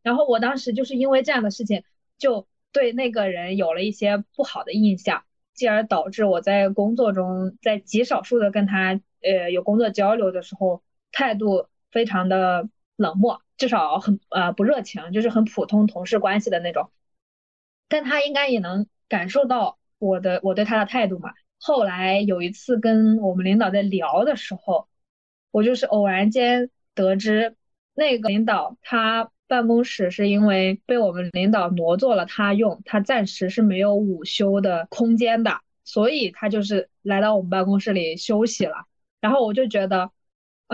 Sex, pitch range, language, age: female, 190-235 Hz, Chinese, 20-39